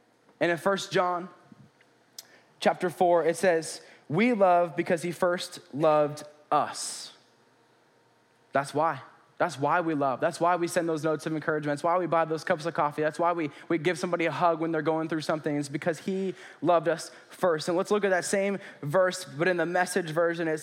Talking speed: 200 wpm